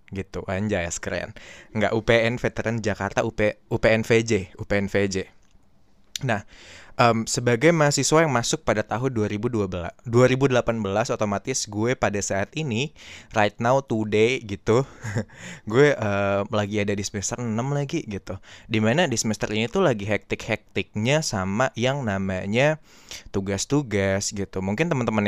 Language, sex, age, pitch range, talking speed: Indonesian, male, 20-39, 100-120 Hz, 125 wpm